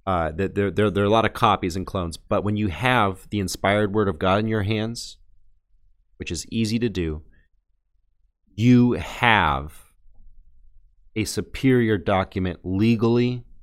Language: English